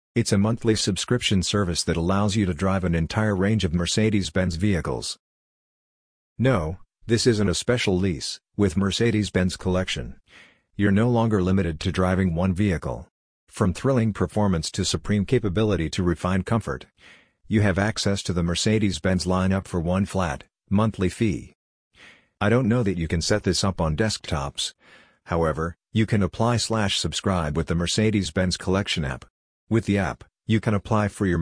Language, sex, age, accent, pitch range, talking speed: English, male, 50-69, American, 90-105 Hz, 160 wpm